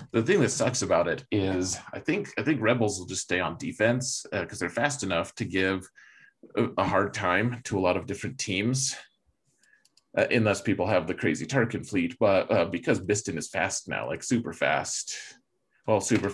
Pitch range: 95-115 Hz